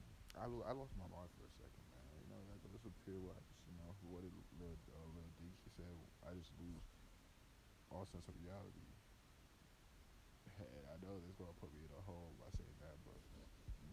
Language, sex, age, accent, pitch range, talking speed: English, male, 20-39, American, 80-95 Hz, 205 wpm